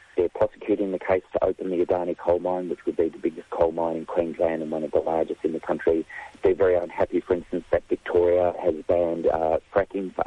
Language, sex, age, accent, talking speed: English, male, 40-59, Australian, 230 wpm